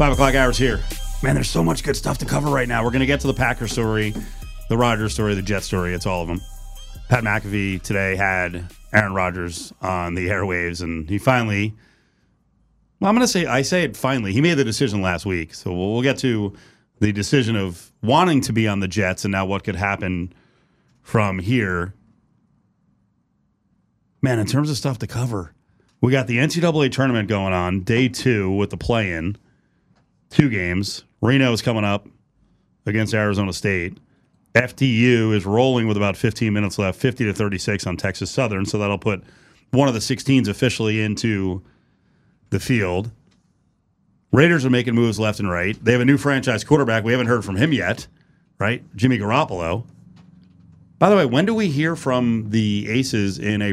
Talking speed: 185 wpm